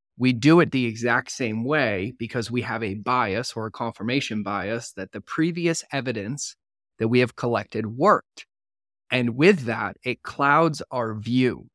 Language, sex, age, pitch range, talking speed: English, male, 20-39, 110-135 Hz, 165 wpm